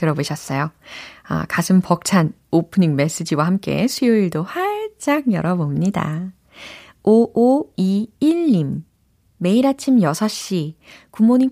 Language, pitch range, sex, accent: Korean, 160-235 Hz, female, native